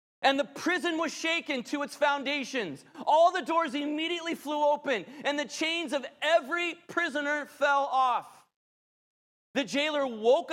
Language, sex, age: English, male, 30-49